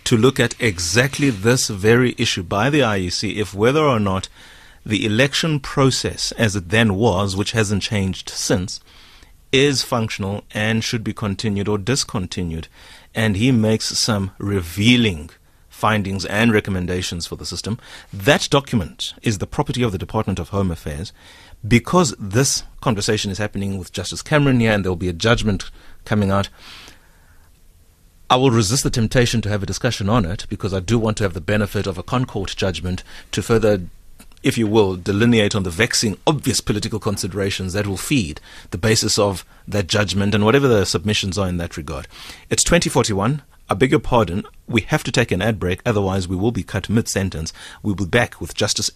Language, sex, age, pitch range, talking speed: English, male, 30-49, 95-120 Hz, 180 wpm